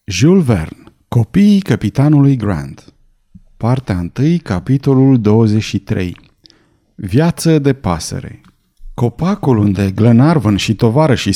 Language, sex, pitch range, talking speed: Romanian, male, 110-155 Hz, 90 wpm